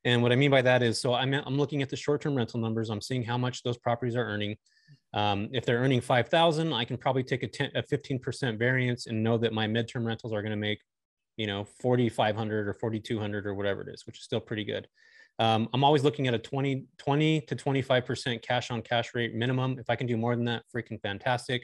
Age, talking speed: 20-39, 235 wpm